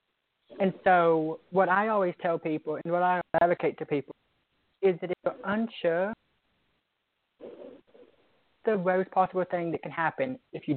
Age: 30-49